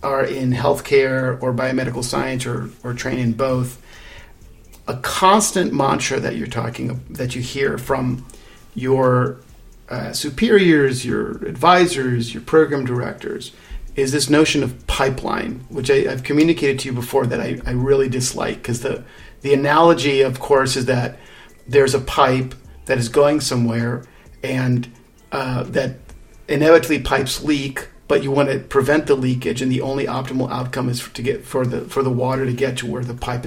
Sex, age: male, 50-69